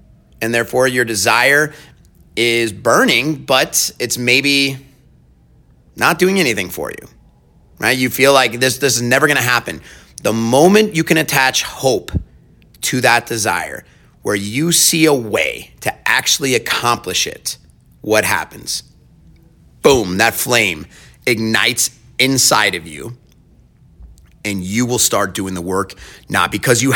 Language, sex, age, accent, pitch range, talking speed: English, male, 30-49, American, 105-145 Hz, 140 wpm